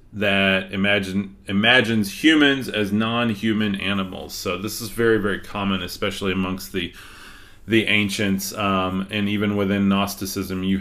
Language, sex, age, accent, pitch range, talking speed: English, male, 30-49, American, 95-110 Hz, 135 wpm